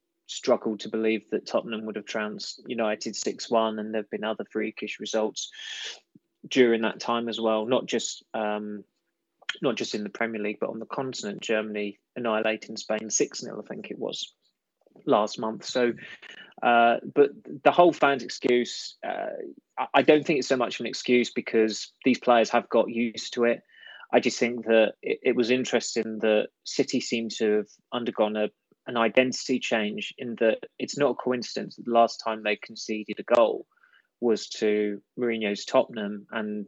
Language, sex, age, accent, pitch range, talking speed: English, male, 20-39, British, 110-125 Hz, 175 wpm